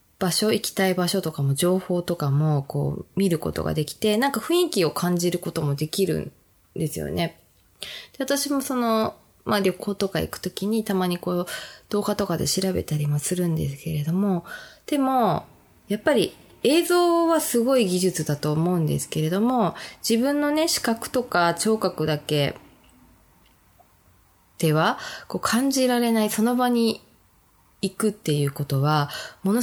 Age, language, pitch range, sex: 20-39, Japanese, 155-230 Hz, female